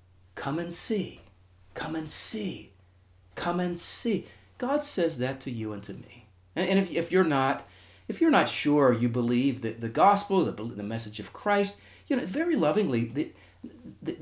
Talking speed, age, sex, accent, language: 180 wpm, 40-59, male, American, English